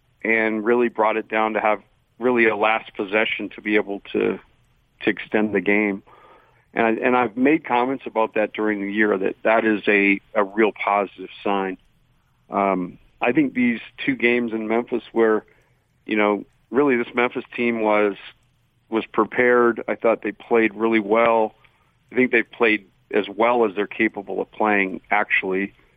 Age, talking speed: 50-69, 170 wpm